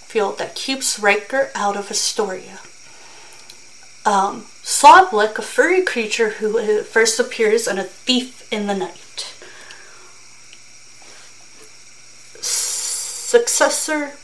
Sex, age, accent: female, 30-49, American